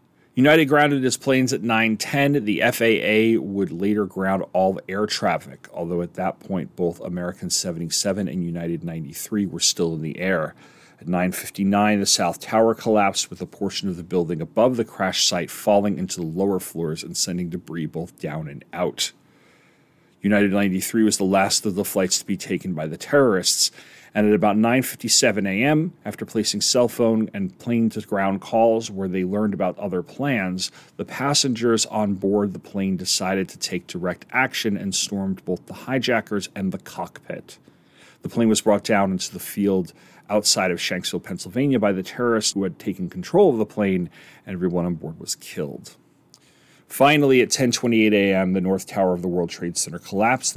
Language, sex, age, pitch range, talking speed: English, male, 40-59, 95-115 Hz, 180 wpm